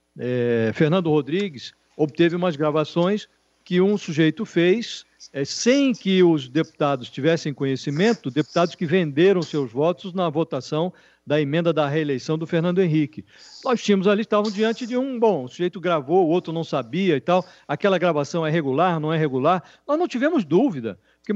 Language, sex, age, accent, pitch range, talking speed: Portuguese, male, 50-69, Brazilian, 150-210 Hz, 165 wpm